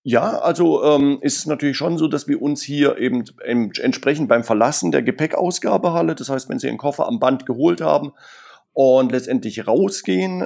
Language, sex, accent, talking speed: German, male, German, 185 wpm